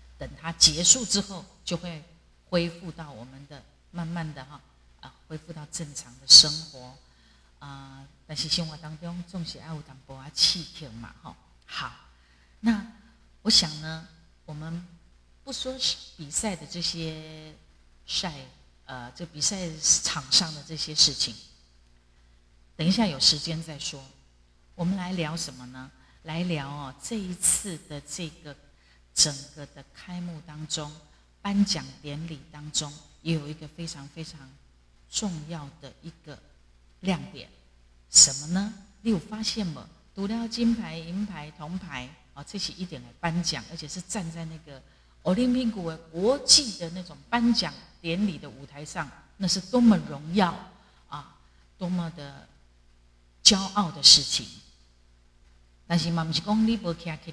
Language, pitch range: Chinese, 130-175 Hz